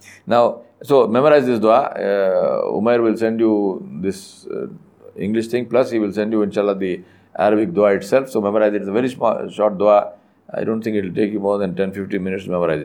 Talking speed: 210 wpm